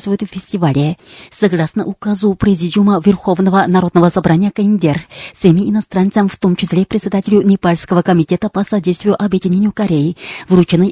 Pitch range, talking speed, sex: 175-200 Hz, 130 wpm, female